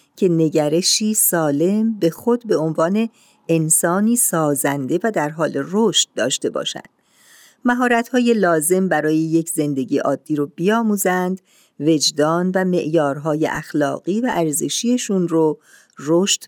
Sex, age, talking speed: female, 50-69, 115 wpm